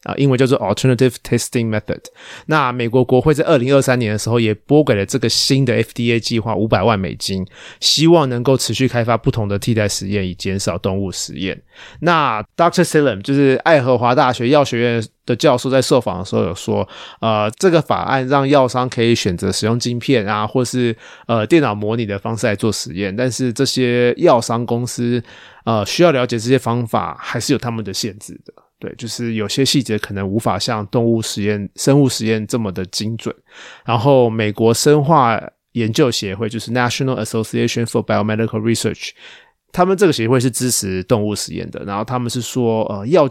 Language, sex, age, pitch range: Chinese, male, 20-39, 110-130 Hz